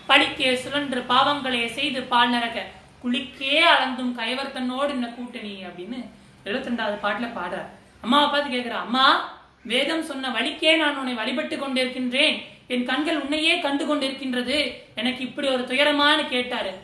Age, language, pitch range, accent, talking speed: 30-49, Tamil, 220-285 Hz, native, 50 wpm